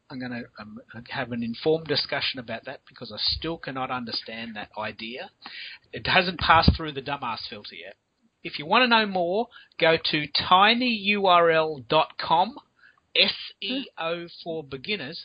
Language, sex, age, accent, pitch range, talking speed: English, male, 30-49, Australian, 130-175 Hz, 135 wpm